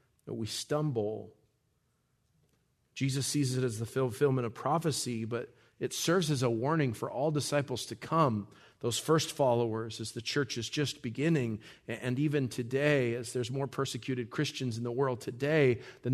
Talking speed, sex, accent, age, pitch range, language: 160 wpm, male, American, 40-59, 115-140 Hz, English